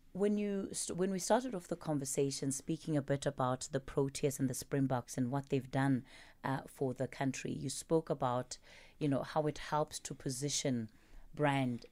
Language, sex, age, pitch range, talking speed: English, female, 30-49, 135-180 Hz, 180 wpm